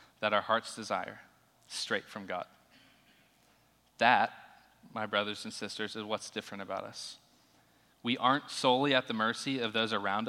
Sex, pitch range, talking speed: male, 110-125 Hz, 150 wpm